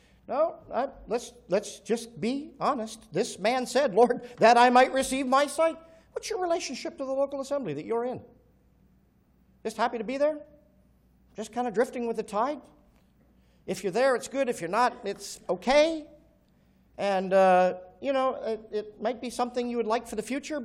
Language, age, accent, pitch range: English, 50-69, American, 165-255 Hz